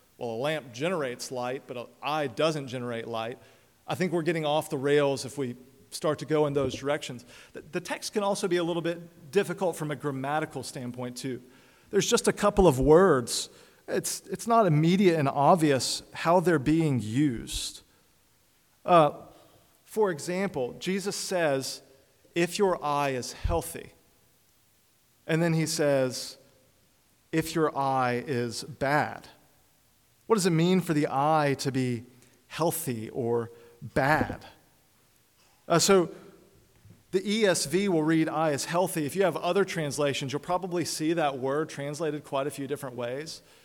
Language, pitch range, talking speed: English, 135-170 Hz, 155 wpm